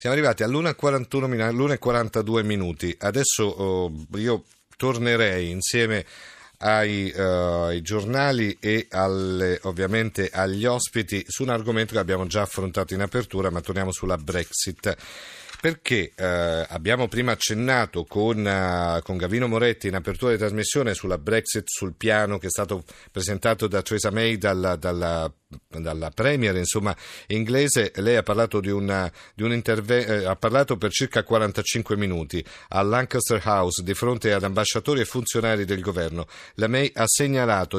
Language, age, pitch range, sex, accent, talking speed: Italian, 50-69, 95-120 Hz, male, native, 140 wpm